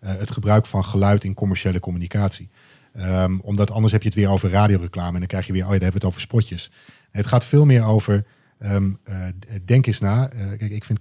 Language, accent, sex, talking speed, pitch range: Dutch, Dutch, male, 240 wpm, 95-115 Hz